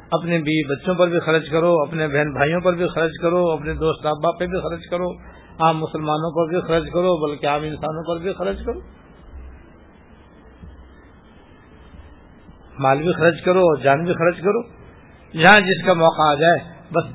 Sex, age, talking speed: male, 50-69, 175 wpm